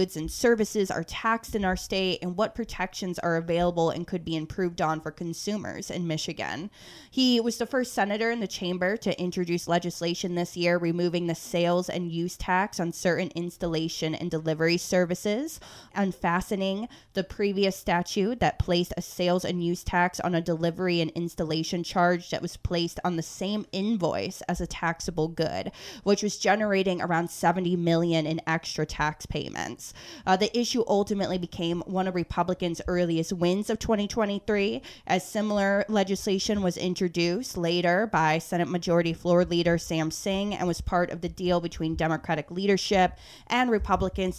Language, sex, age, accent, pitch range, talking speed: English, female, 20-39, American, 165-190 Hz, 165 wpm